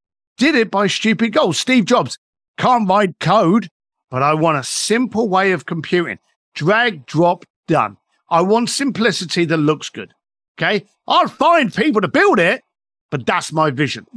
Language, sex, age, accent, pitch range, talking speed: English, male, 50-69, British, 175-255 Hz, 160 wpm